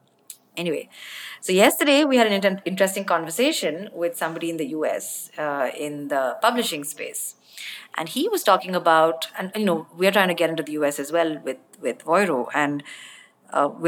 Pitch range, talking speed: 155-190 Hz, 180 wpm